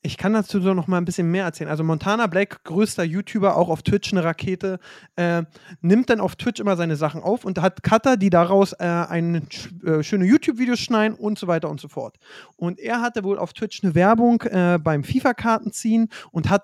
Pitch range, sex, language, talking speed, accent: 175-220 Hz, male, German, 215 wpm, German